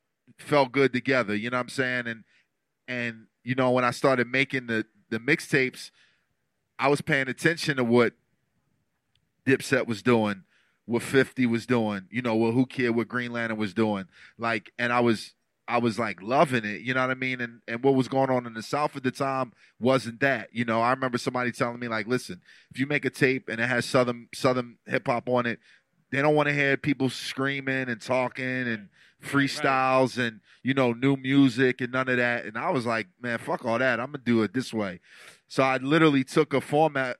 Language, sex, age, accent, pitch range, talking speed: English, male, 30-49, American, 120-135 Hz, 215 wpm